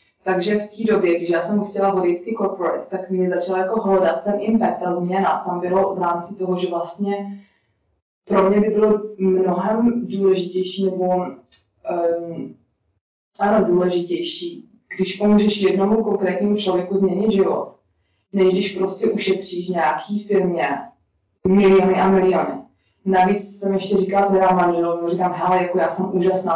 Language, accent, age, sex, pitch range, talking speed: Czech, native, 20-39, female, 170-195 Hz, 145 wpm